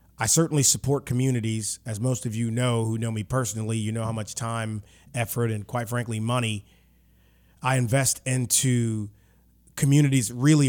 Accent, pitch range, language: American, 110-130 Hz, English